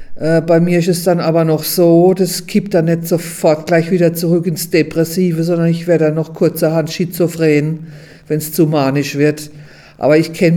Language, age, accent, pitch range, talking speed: German, 50-69, German, 165-180 Hz, 185 wpm